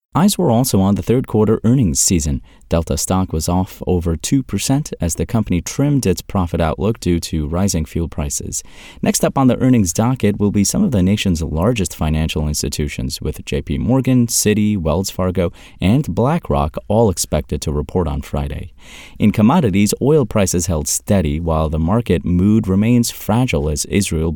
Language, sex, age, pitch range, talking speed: English, male, 30-49, 80-110 Hz, 170 wpm